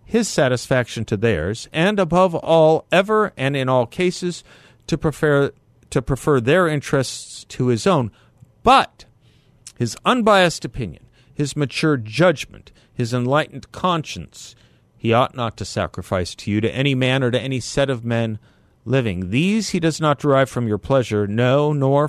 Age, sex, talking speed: 50-69, male, 160 wpm